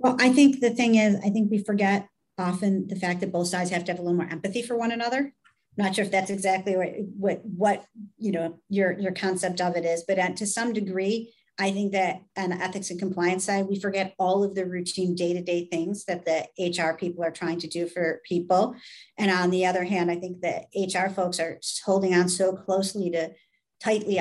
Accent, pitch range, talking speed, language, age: American, 170-195 Hz, 230 wpm, English, 50-69